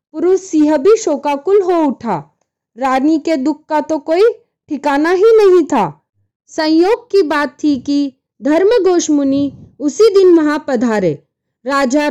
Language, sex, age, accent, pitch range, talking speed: Hindi, female, 20-39, native, 265-345 Hz, 125 wpm